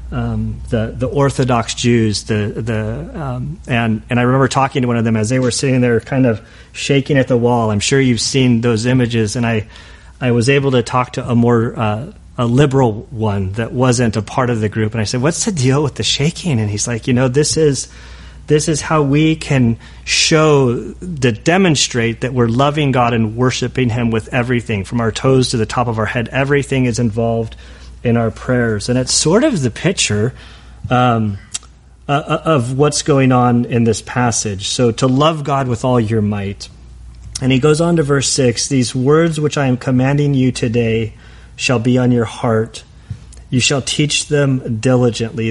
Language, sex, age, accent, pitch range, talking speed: English, male, 40-59, American, 115-135 Hz, 205 wpm